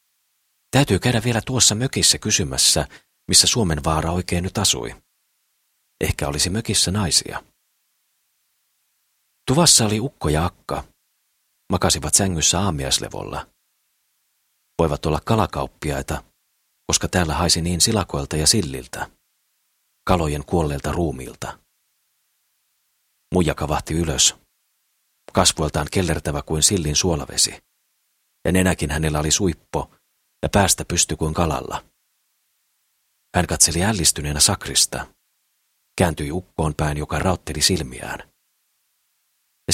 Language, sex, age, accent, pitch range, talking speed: Finnish, male, 40-59, native, 75-95 Hz, 100 wpm